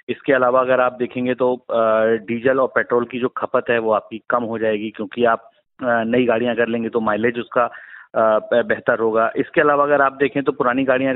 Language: Hindi